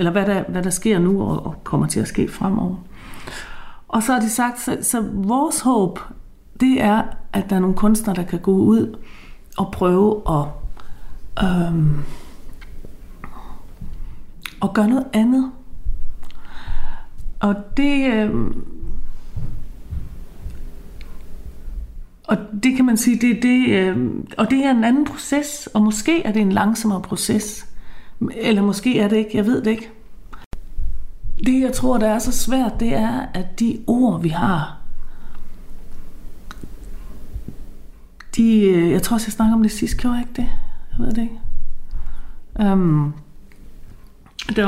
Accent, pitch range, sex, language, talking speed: native, 180-230 Hz, female, Danish, 140 wpm